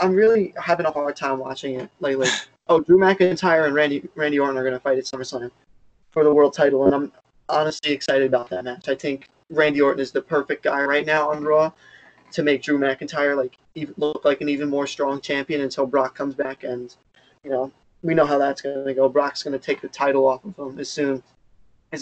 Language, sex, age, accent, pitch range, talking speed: English, male, 20-39, American, 135-155 Hz, 230 wpm